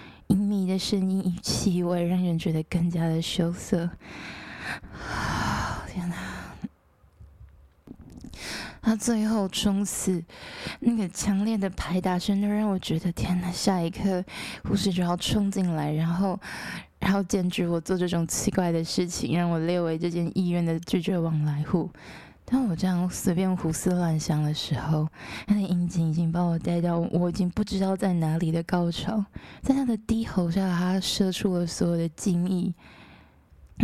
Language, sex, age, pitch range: Chinese, female, 20-39, 170-195 Hz